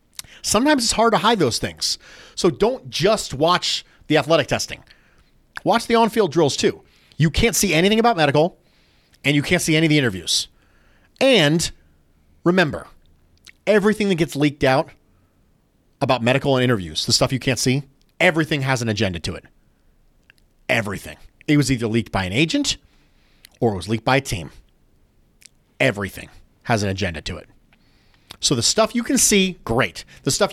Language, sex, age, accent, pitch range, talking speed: English, male, 40-59, American, 110-165 Hz, 165 wpm